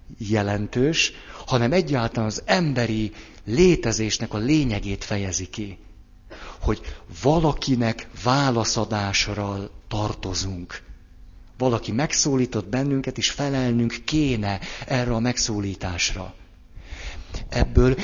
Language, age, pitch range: Hungarian, 60-79, 100-130 Hz